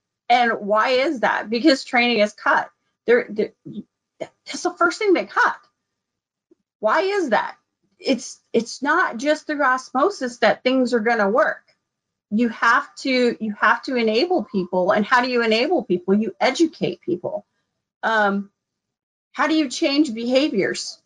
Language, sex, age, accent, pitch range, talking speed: English, female, 40-59, American, 220-300 Hz, 155 wpm